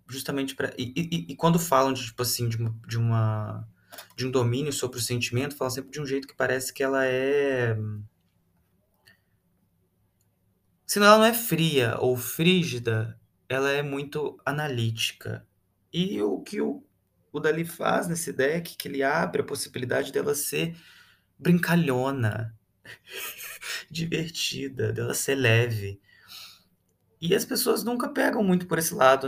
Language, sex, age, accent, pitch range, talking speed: Portuguese, male, 20-39, Brazilian, 110-150 Hz, 135 wpm